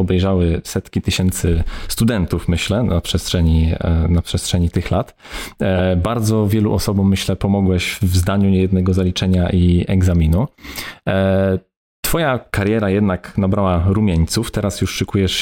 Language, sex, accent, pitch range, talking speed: Polish, male, native, 85-105 Hz, 115 wpm